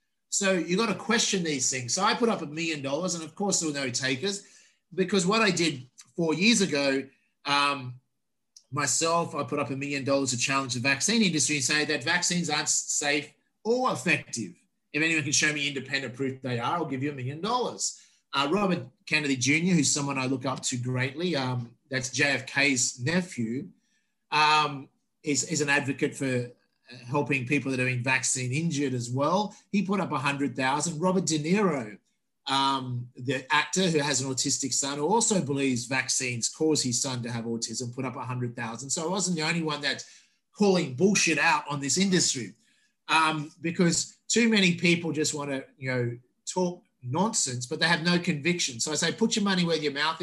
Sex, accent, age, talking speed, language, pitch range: male, Australian, 30-49, 190 wpm, English, 135-175 Hz